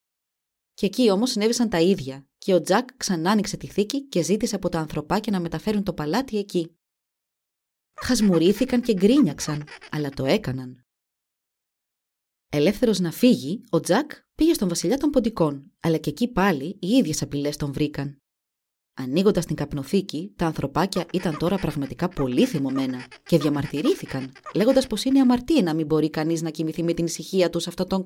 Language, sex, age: Greek, female, 20-39